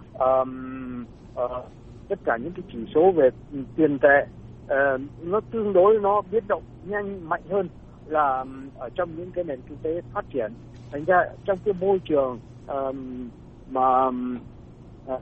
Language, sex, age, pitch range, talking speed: Vietnamese, male, 60-79, 125-175 Hz, 160 wpm